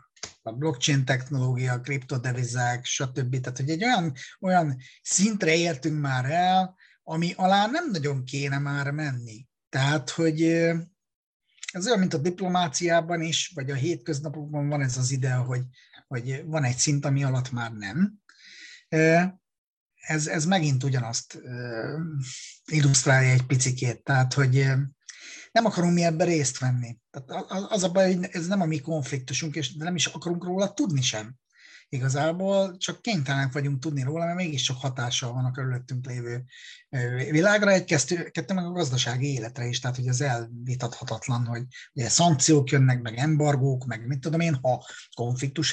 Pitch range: 125-165 Hz